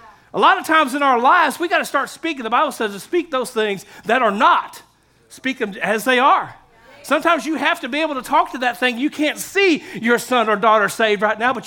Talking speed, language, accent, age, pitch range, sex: 250 wpm, English, American, 40-59, 215-300 Hz, male